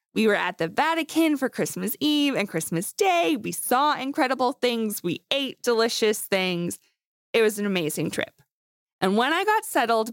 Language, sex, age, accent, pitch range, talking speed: English, female, 20-39, American, 190-255 Hz, 170 wpm